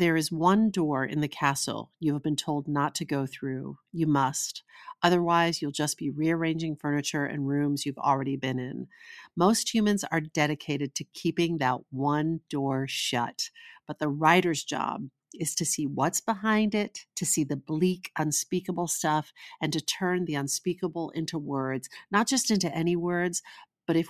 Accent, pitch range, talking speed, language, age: American, 145-185 Hz, 170 wpm, English, 50-69